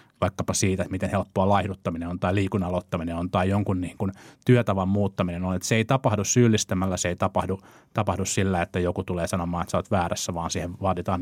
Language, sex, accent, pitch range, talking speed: Finnish, male, native, 95-120 Hz, 210 wpm